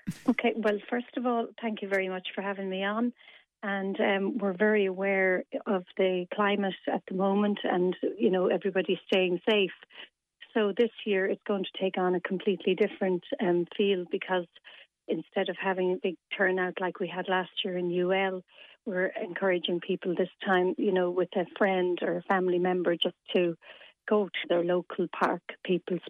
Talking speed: 180 wpm